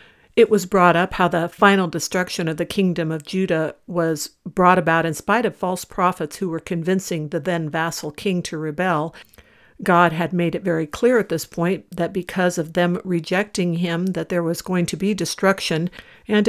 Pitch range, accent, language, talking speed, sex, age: 165-195 Hz, American, English, 195 wpm, female, 60-79